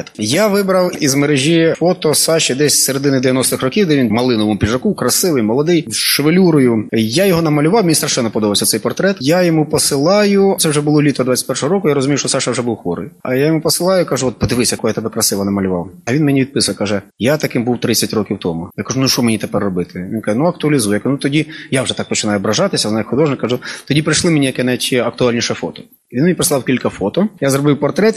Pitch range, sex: 125-160 Hz, male